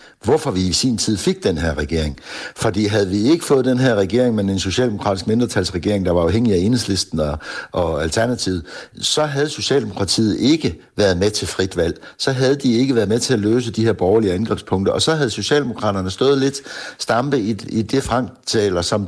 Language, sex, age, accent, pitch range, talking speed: Danish, male, 60-79, native, 105-135 Hz, 200 wpm